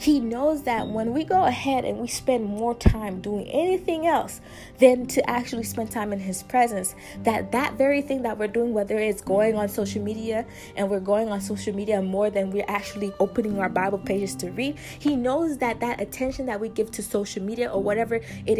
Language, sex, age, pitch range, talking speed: English, female, 20-39, 210-255 Hz, 215 wpm